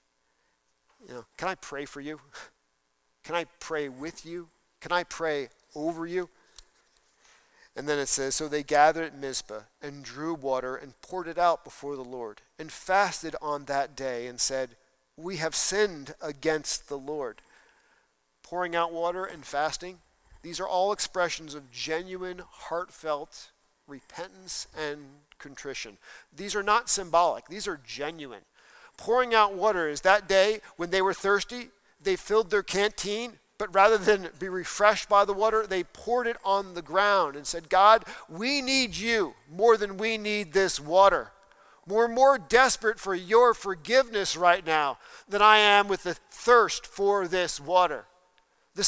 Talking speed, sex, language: 160 wpm, male, English